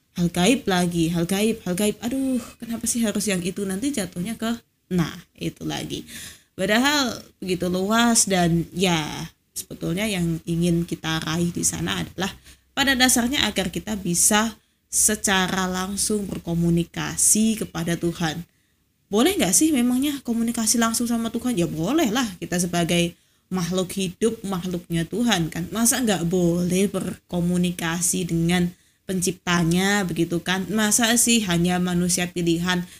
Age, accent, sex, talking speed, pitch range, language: 20-39, native, female, 135 wpm, 170-220 Hz, Indonesian